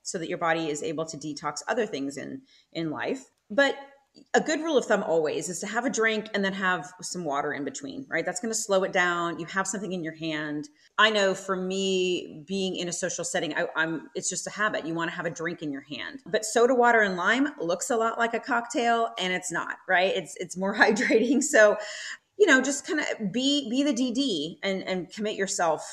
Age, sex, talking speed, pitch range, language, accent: 30-49, female, 235 wpm, 160-215 Hz, English, American